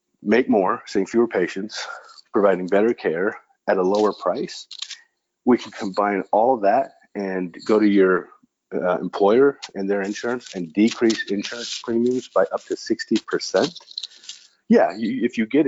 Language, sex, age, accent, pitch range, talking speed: English, male, 40-59, American, 100-135 Hz, 155 wpm